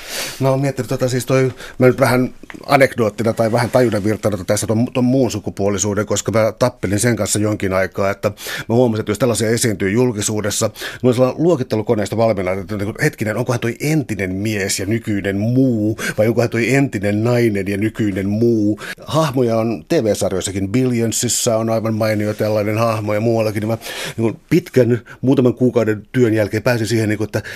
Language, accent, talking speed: Finnish, native, 175 wpm